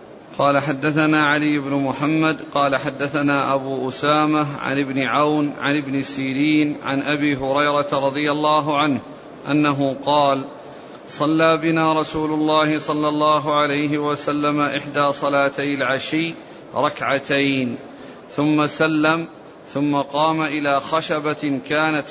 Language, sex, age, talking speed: Arabic, male, 40-59, 115 wpm